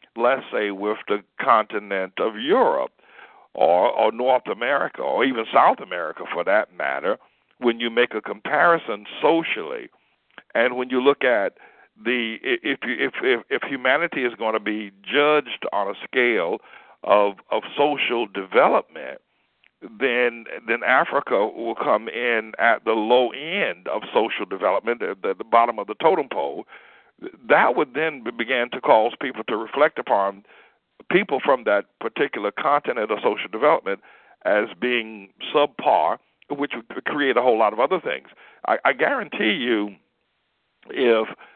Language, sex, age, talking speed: English, male, 60-79, 150 wpm